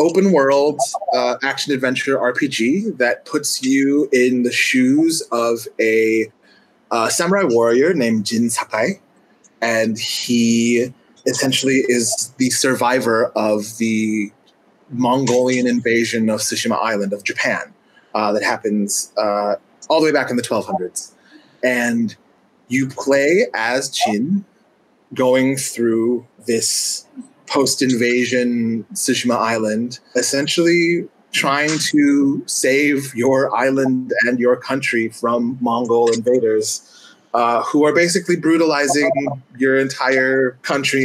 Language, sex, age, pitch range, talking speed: English, male, 30-49, 115-140 Hz, 110 wpm